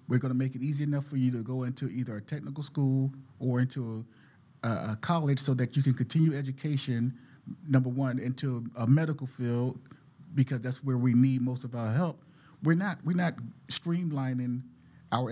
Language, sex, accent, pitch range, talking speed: English, male, American, 125-140 Hz, 190 wpm